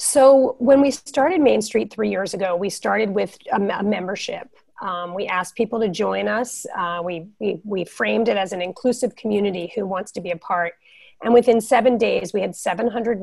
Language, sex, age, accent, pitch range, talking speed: English, female, 30-49, American, 190-250 Hz, 200 wpm